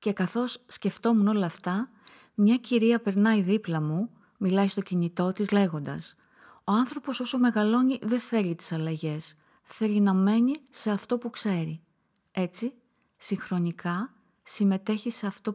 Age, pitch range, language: 30-49, 180-215 Hz, Greek